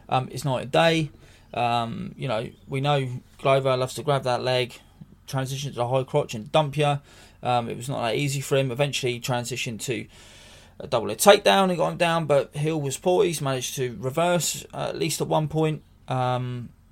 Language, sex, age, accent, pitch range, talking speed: English, male, 20-39, British, 125-145 Hz, 205 wpm